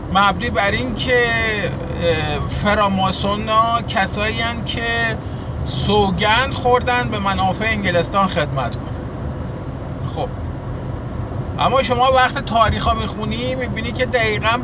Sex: male